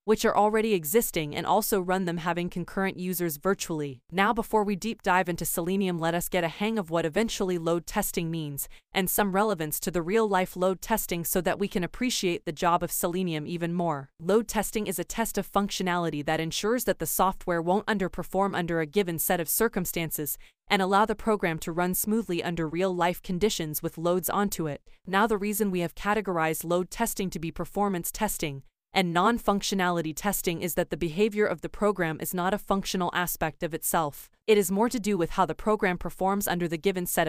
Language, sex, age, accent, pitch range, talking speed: English, female, 20-39, American, 170-205 Hz, 205 wpm